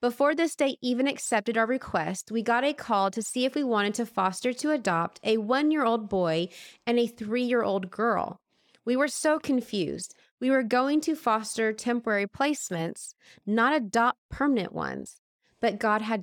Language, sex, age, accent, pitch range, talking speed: English, female, 20-39, American, 200-255 Hz, 165 wpm